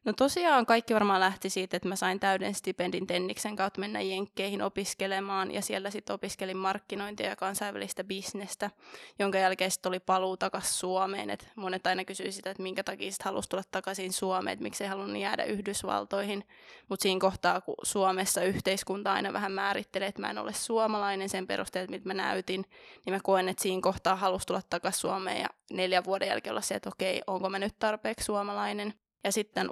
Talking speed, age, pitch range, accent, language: 190 wpm, 20-39, 190-200 Hz, native, Finnish